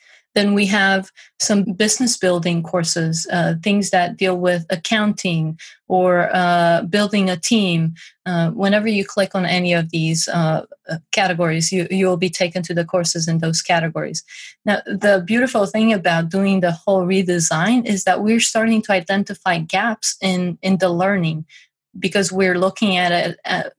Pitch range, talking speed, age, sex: 175-200 Hz, 160 wpm, 30-49, female